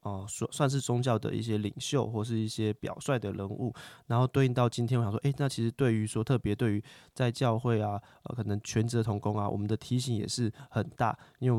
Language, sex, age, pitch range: Chinese, male, 20-39, 110-130 Hz